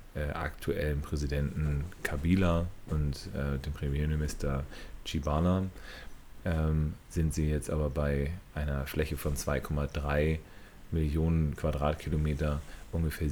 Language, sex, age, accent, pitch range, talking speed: German, male, 30-49, German, 75-85 Hz, 95 wpm